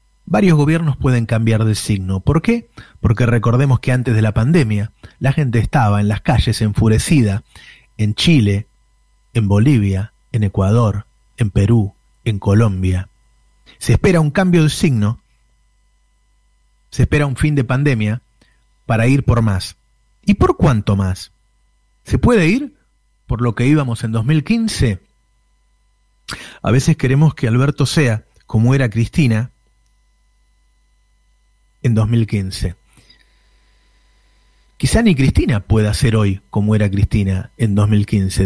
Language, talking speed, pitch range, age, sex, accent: Spanish, 130 wpm, 105-135 Hz, 30-49, male, Argentinian